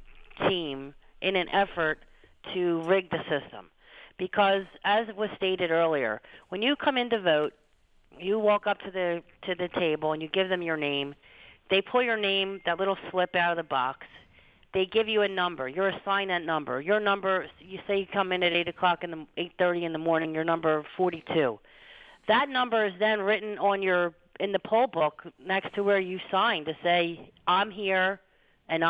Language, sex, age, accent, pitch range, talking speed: English, female, 40-59, American, 170-205 Hz, 195 wpm